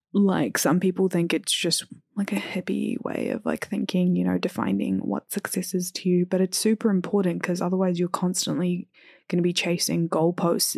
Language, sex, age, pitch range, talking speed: English, female, 10-29, 165-190 Hz, 190 wpm